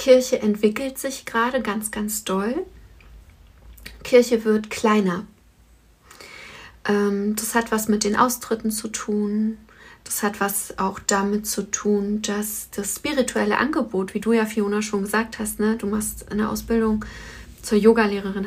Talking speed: 140 wpm